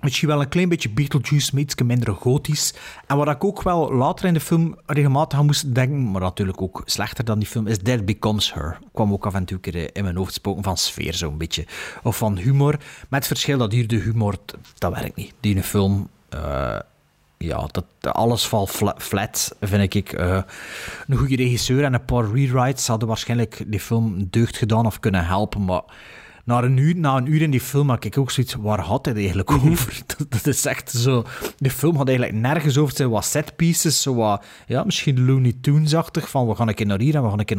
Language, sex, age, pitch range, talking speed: Dutch, male, 40-59, 105-140 Hz, 220 wpm